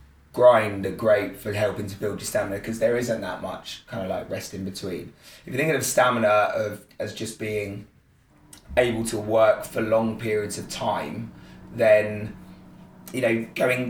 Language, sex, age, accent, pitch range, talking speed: English, male, 20-39, British, 100-115 Hz, 175 wpm